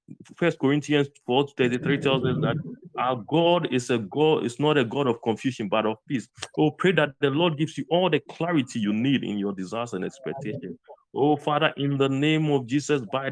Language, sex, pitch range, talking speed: English, male, 145-175 Hz, 210 wpm